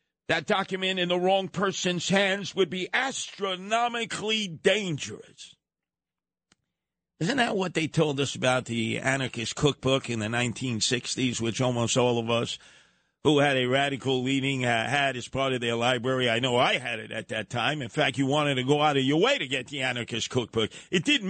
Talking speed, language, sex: 185 wpm, English, male